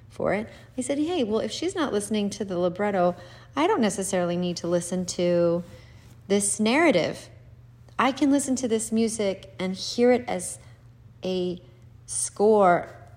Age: 30-49